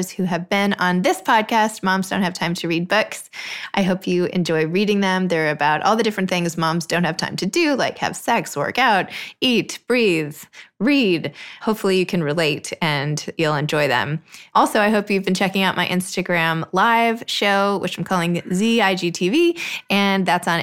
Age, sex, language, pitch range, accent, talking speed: 20-39, female, English, 175-210 Hz, American, 190 wpm